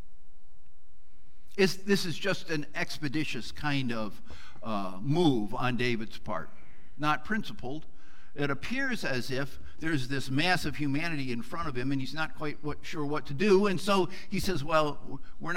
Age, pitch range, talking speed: 60-79, 130-185 Hz, 160 wpm